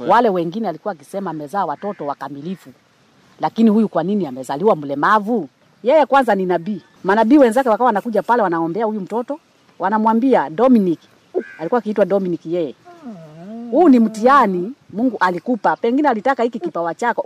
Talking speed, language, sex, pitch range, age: 145 wpm, Swahili, female, 190-250 Hz, 40-59